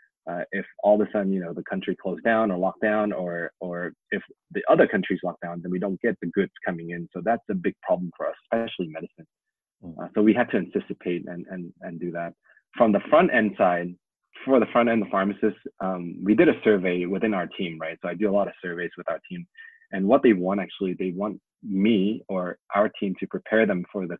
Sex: male